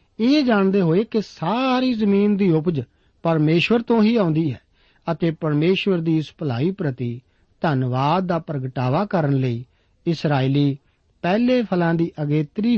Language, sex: Punjabi, male